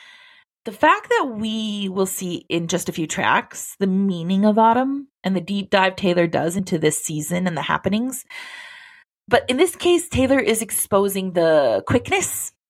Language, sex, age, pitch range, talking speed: English, female, 30-49, 175-265 Hz, 170 wpm